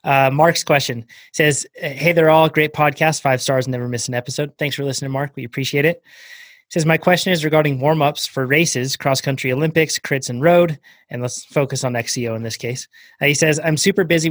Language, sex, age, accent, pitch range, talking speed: English, male, 20-39, American, 130-155 Hz, 220 wpm